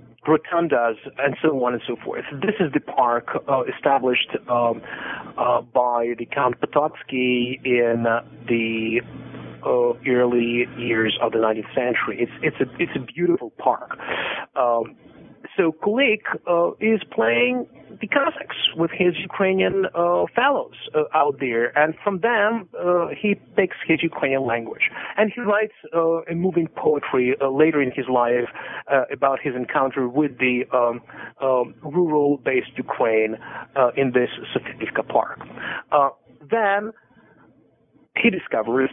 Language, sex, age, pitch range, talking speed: English, male, 40-59, 125-165 Hz, 140 wpm